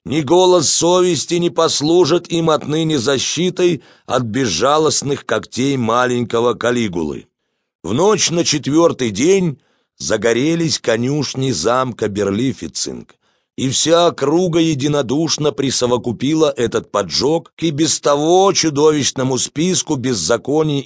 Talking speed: 105 wpm